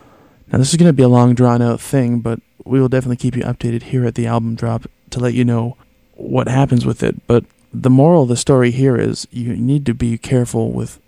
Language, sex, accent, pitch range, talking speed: English, male, American, 115-135 Hz, 240 wpm